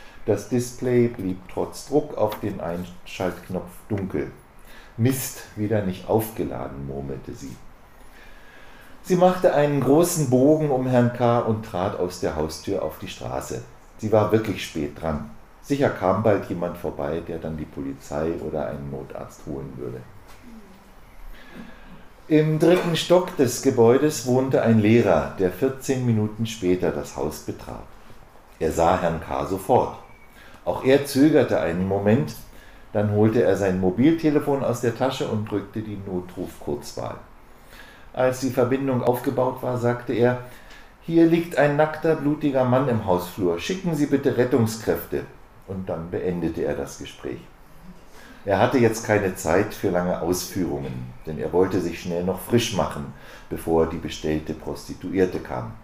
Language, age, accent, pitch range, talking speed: German, 50-69, German, 90-130 Hz, 145 wpm